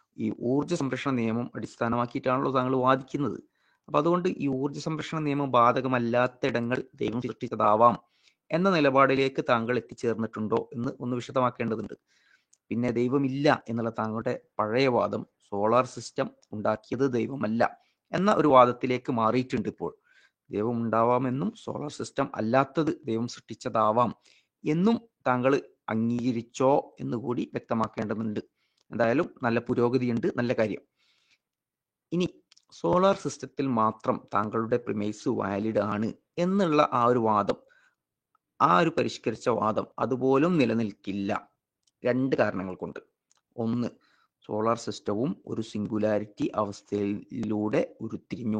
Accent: native